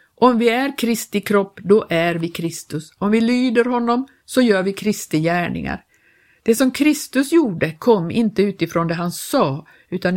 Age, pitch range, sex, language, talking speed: 50-69, 170-220 Hz, female, Swedish, 165 wpm